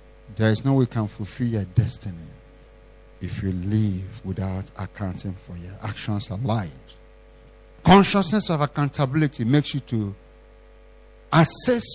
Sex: male